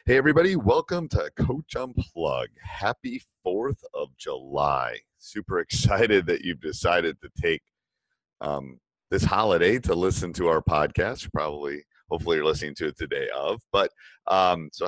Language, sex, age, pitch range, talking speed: English, male, 30-49, 80-110 Hz, 145 wpm